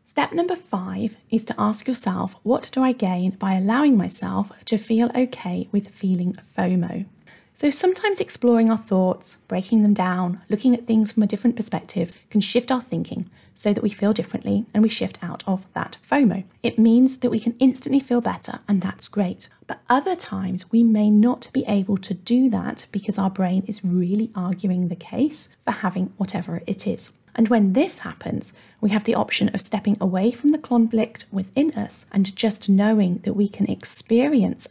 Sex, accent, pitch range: female, British, 190-240 Hz